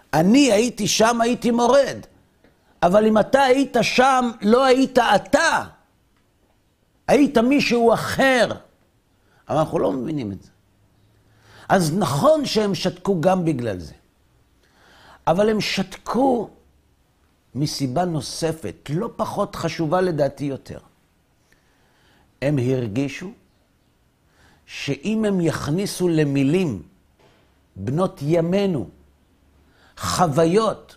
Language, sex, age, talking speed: Hebrew, male, 50-69, 95 wpm